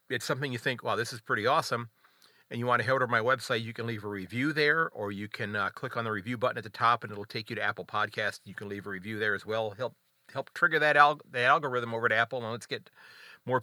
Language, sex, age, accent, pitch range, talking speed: English, male, 40-59, American, 110-130 Hz, 285 wpm